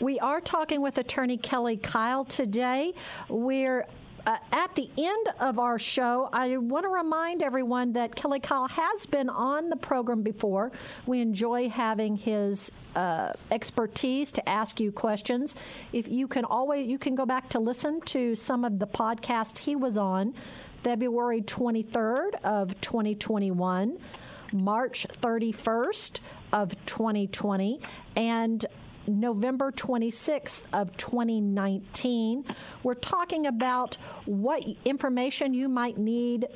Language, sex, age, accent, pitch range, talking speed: English, female, 50-69, American, 225-270 Hz, 130 wpm